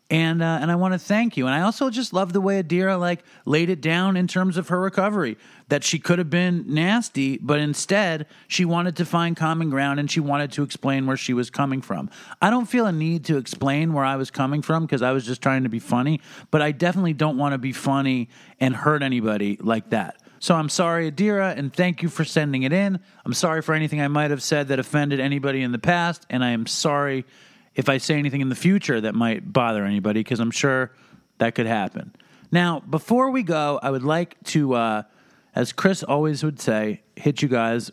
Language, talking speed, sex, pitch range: English, 230 wpm, male, 130-175 Hz